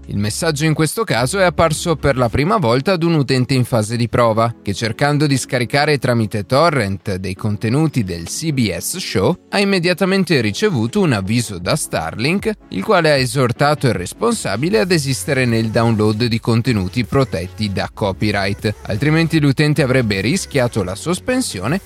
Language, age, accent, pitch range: Italian, 30-49, native, 105-160 Hz